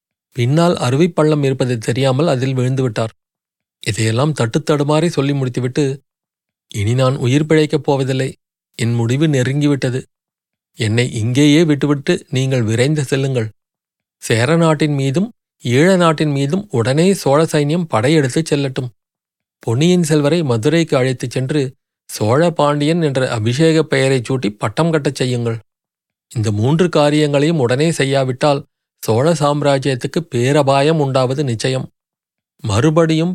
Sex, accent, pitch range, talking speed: male, native, 125-155 Hz, 110 wpm